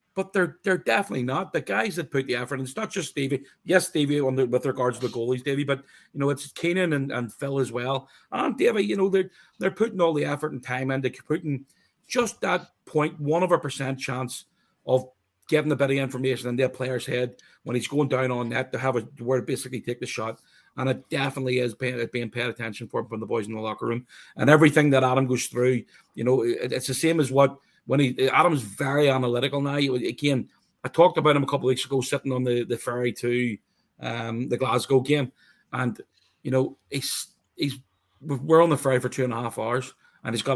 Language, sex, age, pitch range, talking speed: English, male, 40-59, 125-145 Hz, 235 wpm